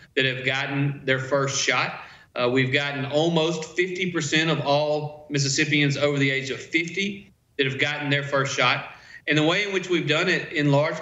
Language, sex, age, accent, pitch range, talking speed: English, male, 40-59, American, 135-150 Hz, 190 wpm